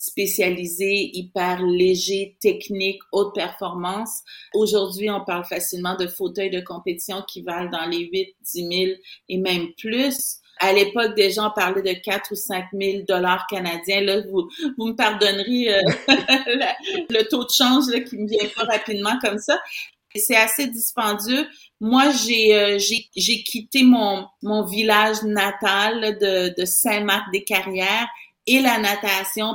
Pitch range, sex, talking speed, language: 200-250 Hz, female, 155 wpm, French